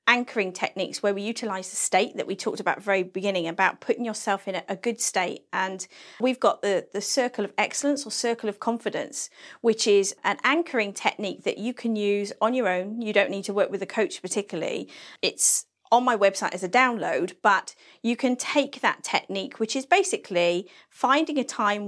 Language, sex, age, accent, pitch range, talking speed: English, female, 40-59, British, 200-260 Hz, 195 wpm